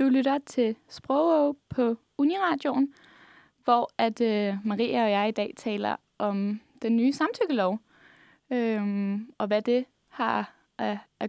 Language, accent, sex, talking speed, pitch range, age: Danish, native, female, 115 wpm, 205-250 Hz, 20-39